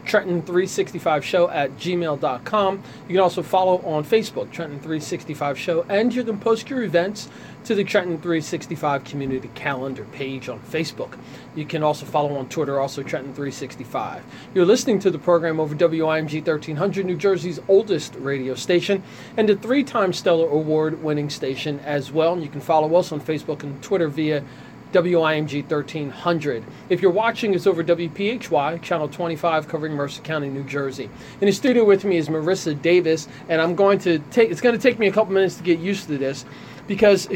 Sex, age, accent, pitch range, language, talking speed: male, 30-49, American, 150-195 Hz, English, 170 wpm